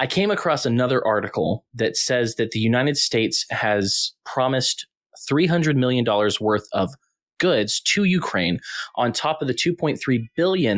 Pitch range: 105-135 Hz